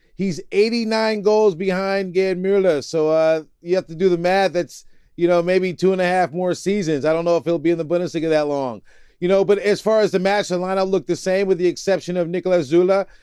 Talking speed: 245 wpm